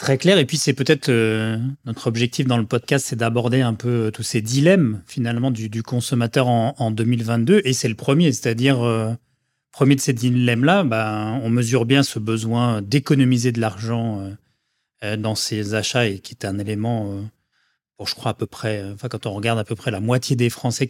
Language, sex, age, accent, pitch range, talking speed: French, male, 30-49, French, 115-135 Hz, 205 wpm